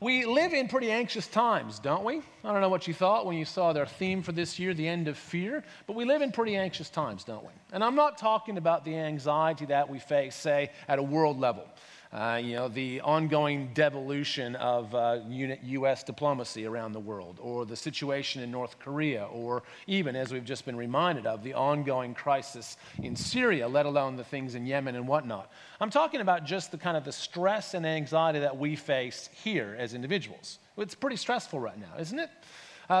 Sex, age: male, 40-59